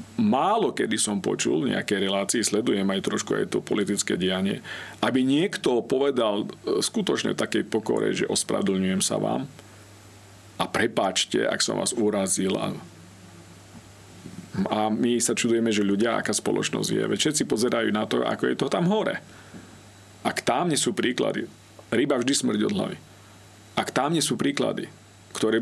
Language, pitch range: Slovak, 100-125 Hz